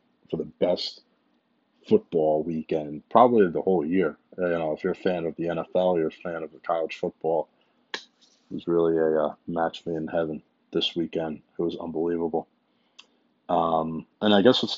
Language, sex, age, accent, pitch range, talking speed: English, male, 40-59, American, 80-90 Hz, 180 wpm